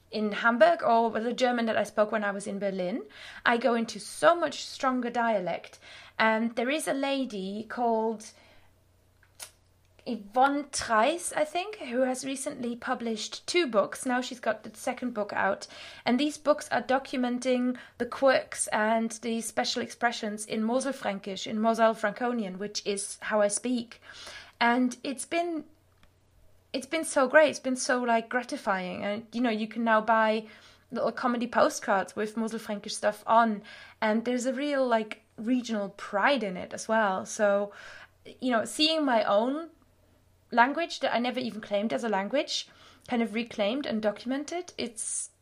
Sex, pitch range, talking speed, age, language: female, 210-255 Hz, 160 wpm, 20-39, English